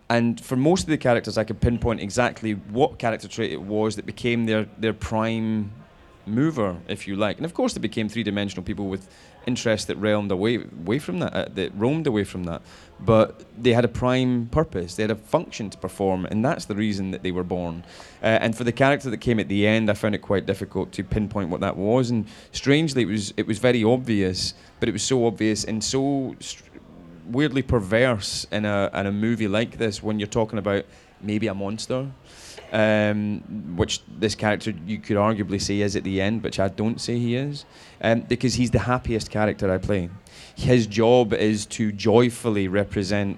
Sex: male